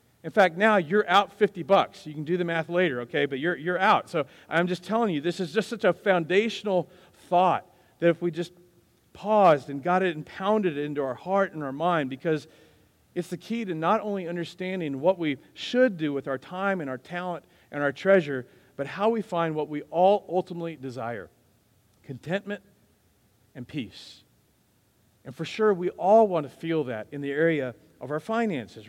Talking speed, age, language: 195 wpm, 40-59, English